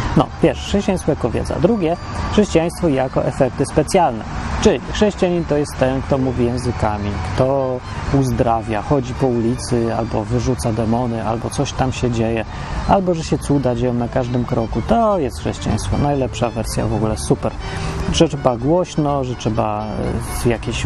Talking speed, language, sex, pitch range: 150 wpm, Polish, male, 115-145 Hz